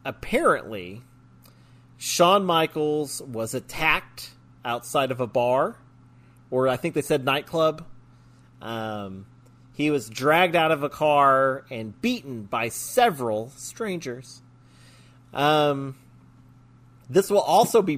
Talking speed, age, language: 110 wpm, 30-49, English